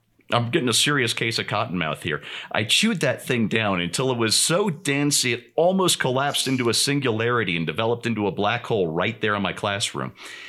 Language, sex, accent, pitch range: English, male, American, 105-140 Hz